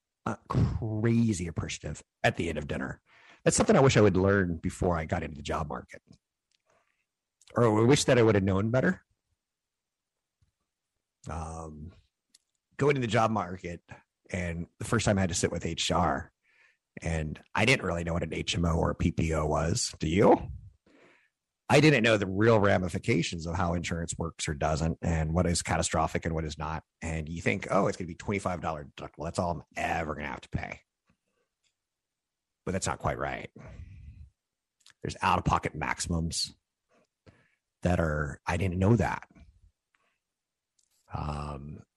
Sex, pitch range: male, 80-105 Hz